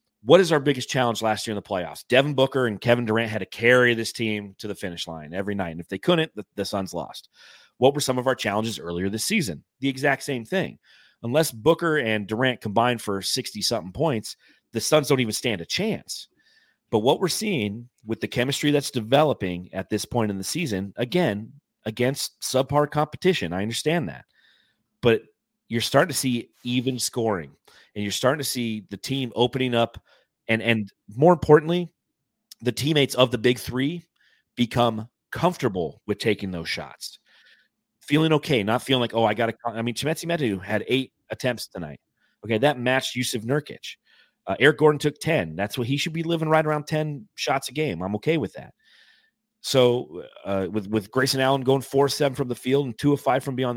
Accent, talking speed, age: American, 195 wpm, 30-49